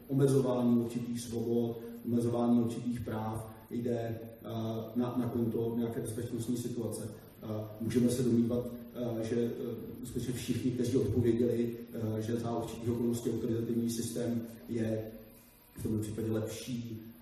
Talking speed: 130 wpm